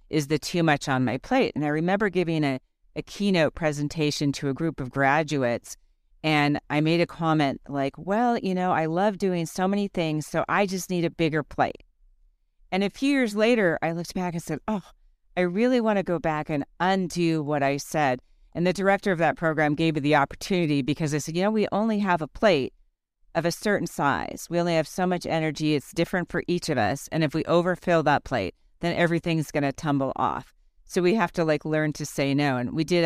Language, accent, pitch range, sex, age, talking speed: English, American, 140-175 Hz, female, 40-59, 225 wpm